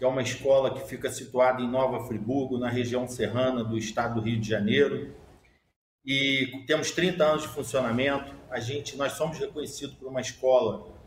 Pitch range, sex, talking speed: 125-155 Hz, male, 180 wpm